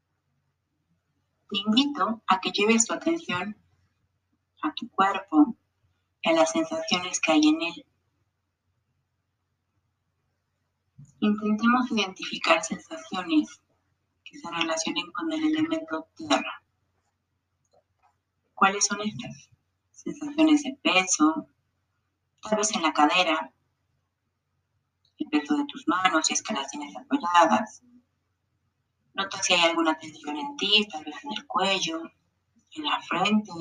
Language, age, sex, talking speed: Spanish, 30-49, female, 115 wpm